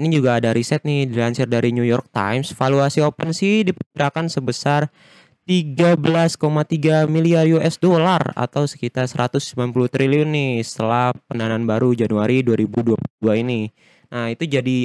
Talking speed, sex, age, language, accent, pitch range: 135 wpm, male, 20-39, Indonesian, native, 120-155 Hz